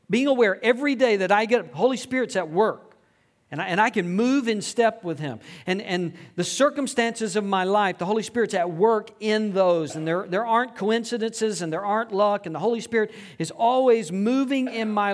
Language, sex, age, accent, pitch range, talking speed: English, male, 50-69, American, 170-235 Hz, 210 wpm